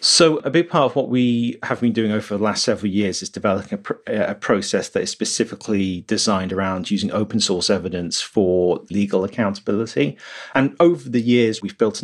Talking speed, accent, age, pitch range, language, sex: 200 wpm, British, 30-49, 95-115 Hz, English, male